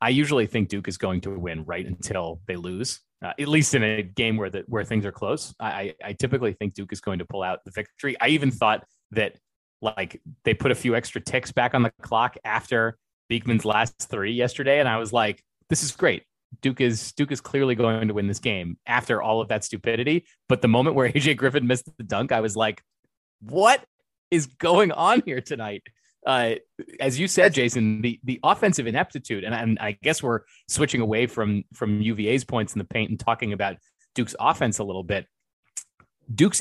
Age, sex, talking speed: 30-49, male, 210 wpm